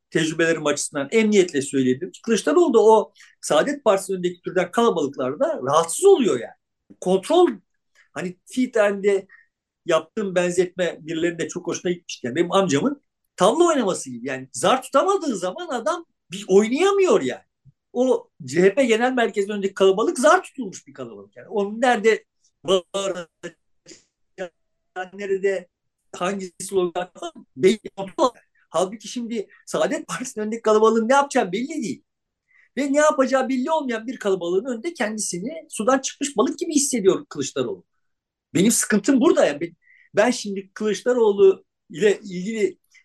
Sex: male